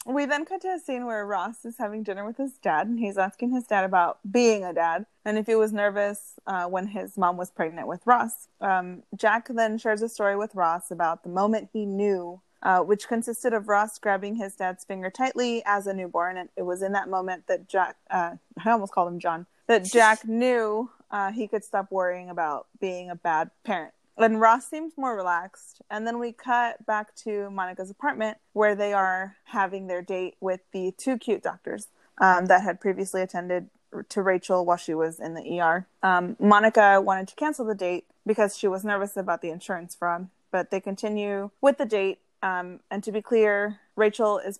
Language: English